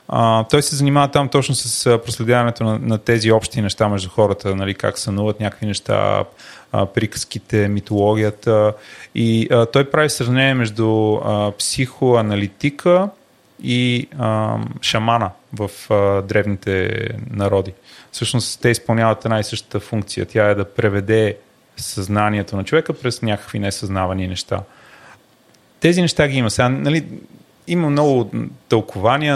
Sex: male